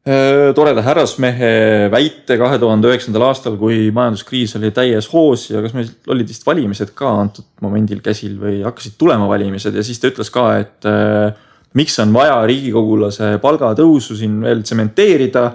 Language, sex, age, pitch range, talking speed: English, male, 20-39, 110-130 Hz, 140 wpm